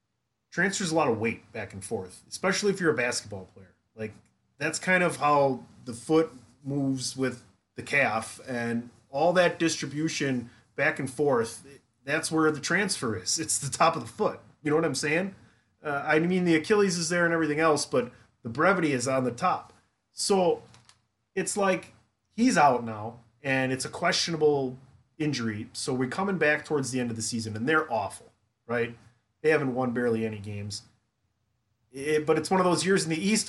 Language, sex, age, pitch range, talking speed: English, male, 30-49, 115-155 Hz, 190 wpm